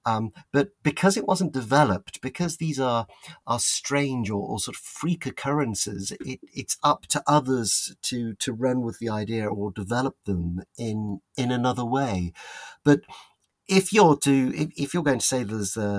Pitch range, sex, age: 100-135 Hz, male, 40-59